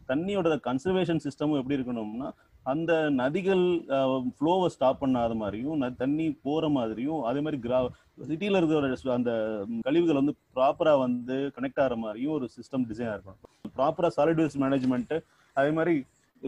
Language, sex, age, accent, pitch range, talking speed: Tamil, male, 30-49, native, 130-165 Hz, 130 wpm